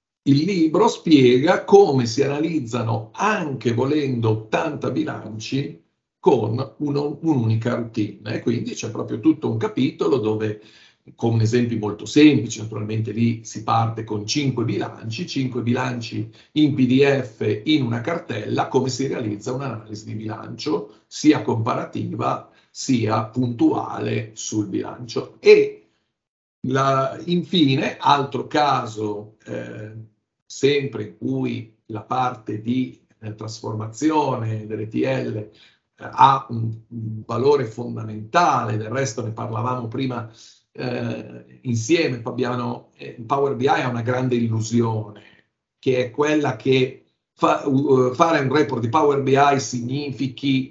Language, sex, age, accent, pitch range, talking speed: Italian, male, 50-69, native, 110-140 Hz, 120 wpm